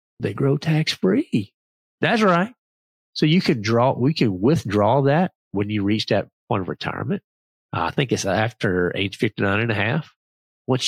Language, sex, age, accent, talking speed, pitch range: English, male, 40-59, American, 175 wpm, 105-145 Hz